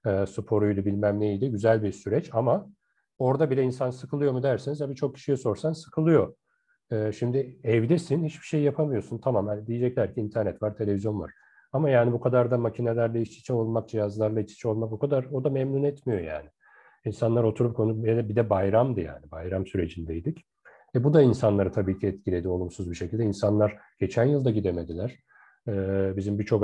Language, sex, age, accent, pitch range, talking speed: Turkish, male, 40-59, native, 100-130 Hz, 170 wpm